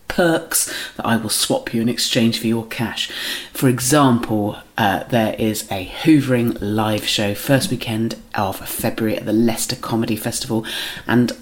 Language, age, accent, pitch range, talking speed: English, 30-49, British, 115-150 Hz, 160 wpm